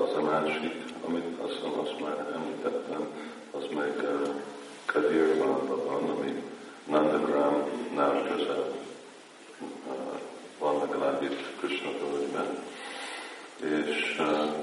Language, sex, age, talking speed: Hungarian, male, 50-69, 105 wpm